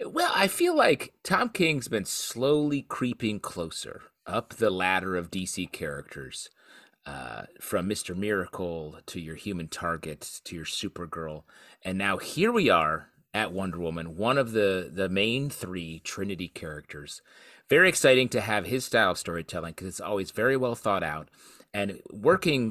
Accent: American